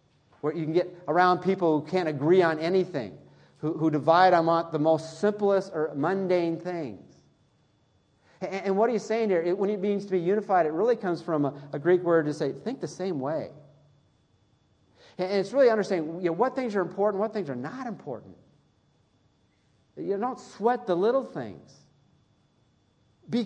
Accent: American